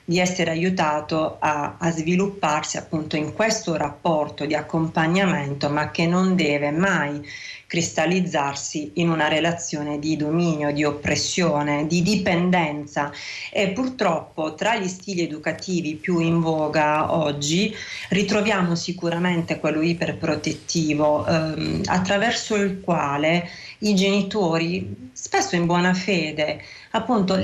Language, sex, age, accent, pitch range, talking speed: Italian, female, 40-59, native, 155-195 Hz, 115 wpm